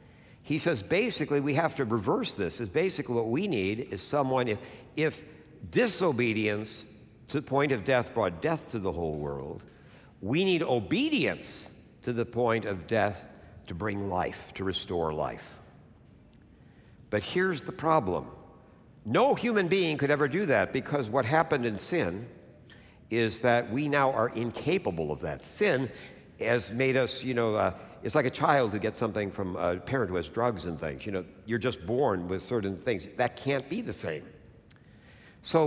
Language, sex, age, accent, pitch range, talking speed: English, male, 60-79, American, 105-140 Hz, 175 wpm